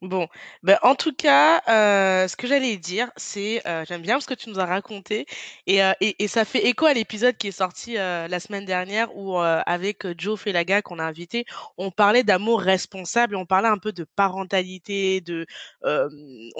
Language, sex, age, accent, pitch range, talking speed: French, female, 20-39, French, 180-220 Hz, 205 wpm